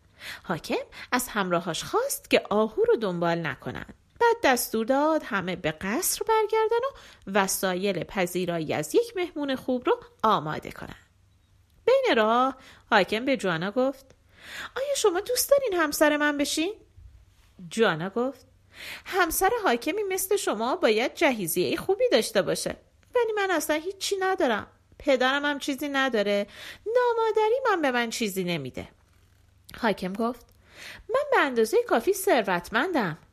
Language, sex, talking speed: Persian, female, 130 wpm